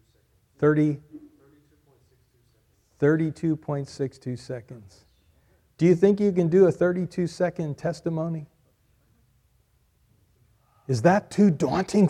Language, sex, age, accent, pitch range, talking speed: English, male, 40-59, American, 140-180 Hz, 85 wpm